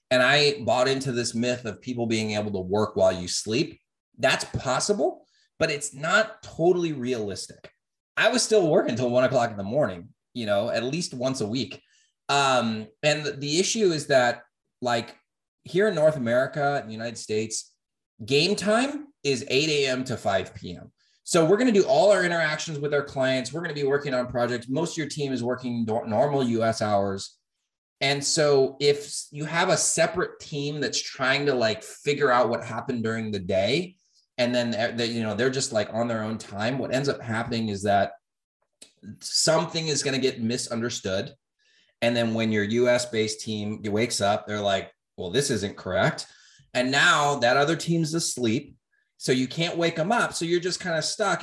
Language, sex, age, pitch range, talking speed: English, male, 30-49, 115-155 Hz, 190 wpm